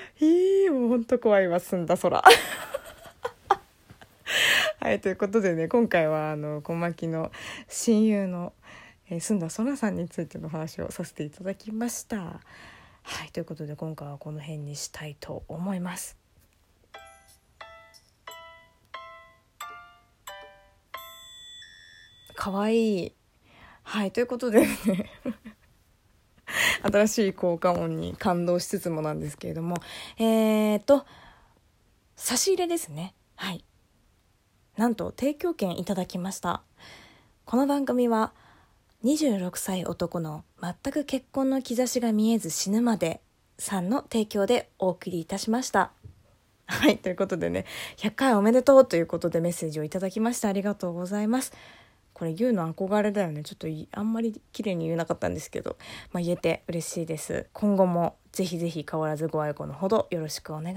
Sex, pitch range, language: female, 165-230 Hz, Japanese